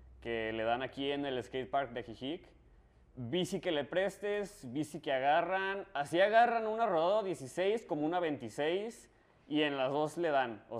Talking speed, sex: 170 wpm, male